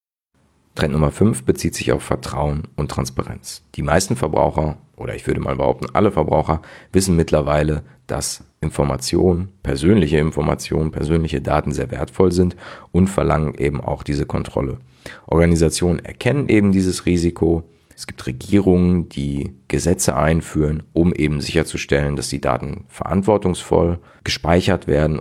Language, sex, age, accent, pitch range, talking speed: German, male, 40-59, German, 70-90 Hz, 135 wpm